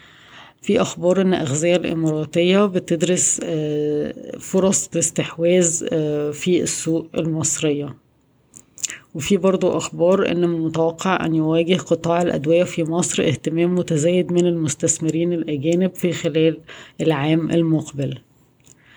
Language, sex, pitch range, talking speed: Arabic, female, 155-175 Hz, 100 wpm